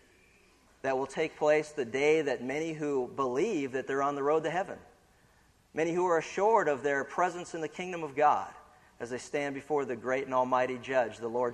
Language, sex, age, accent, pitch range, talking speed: English, male, 50-69, American, 125-155 Hz, 210 wpm